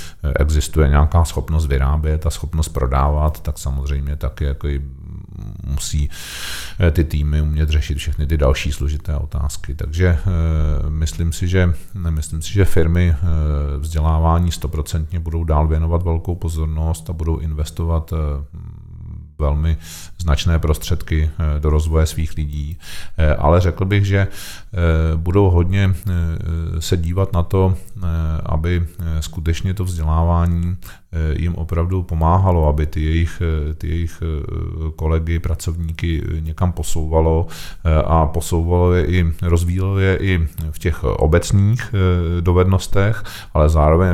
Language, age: Czech, 40-59